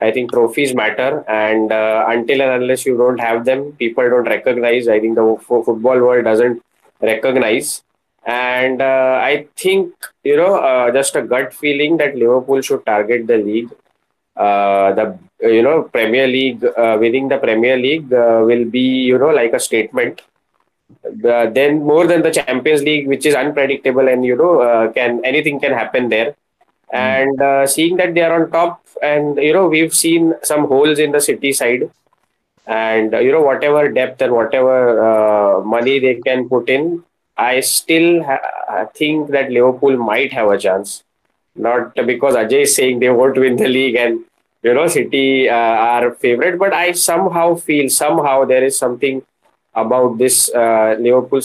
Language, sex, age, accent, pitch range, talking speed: English, male, 20-39, Indian, 120-145 Hz, 175 wpm